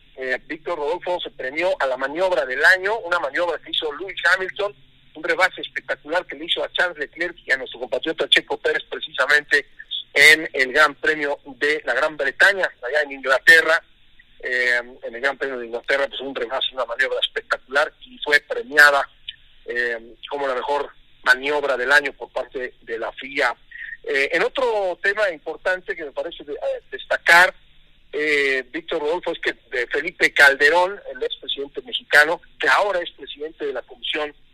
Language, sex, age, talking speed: Spanish, male, 40-59, 175 wpm